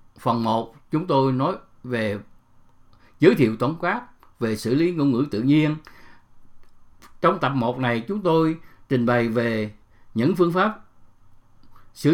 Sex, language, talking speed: male, English, 150 wpm